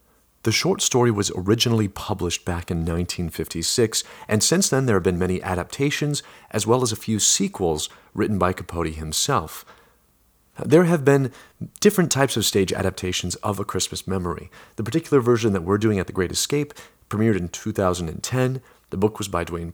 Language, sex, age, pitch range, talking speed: English, male, 40-59, 90-120 Hz, 175 wpm